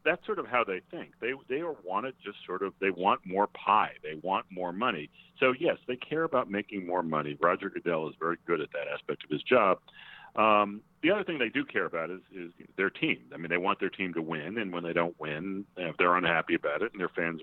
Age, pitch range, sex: 40-59, 75-95 Hz, male